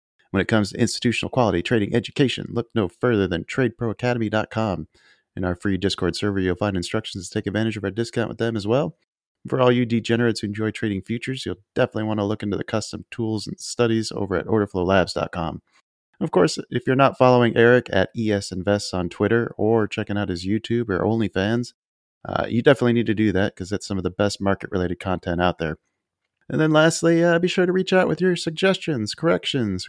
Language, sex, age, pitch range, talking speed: English, male, 30-49, 100-125 Hz, 205 wpm